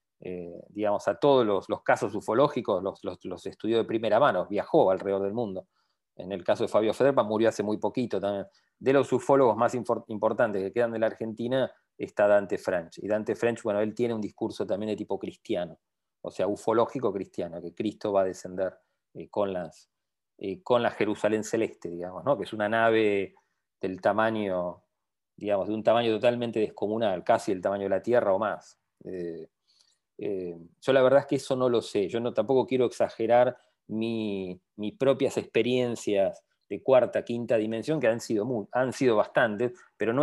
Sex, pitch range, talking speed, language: male, 100-120 Hz, 185 wpm, English